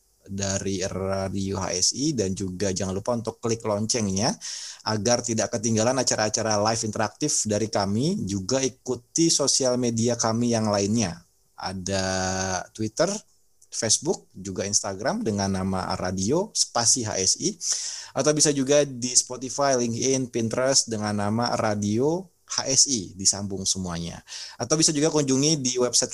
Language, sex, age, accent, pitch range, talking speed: Indonesian, male, 30-49, native, 100-125 Hz, 125 wpm